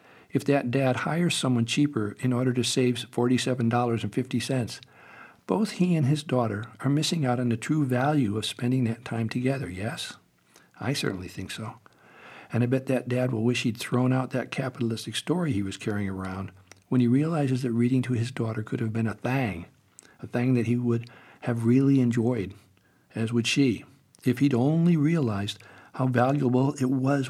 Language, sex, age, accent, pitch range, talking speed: English, male, 60-79, American, 110-135 Hz, 180 wpm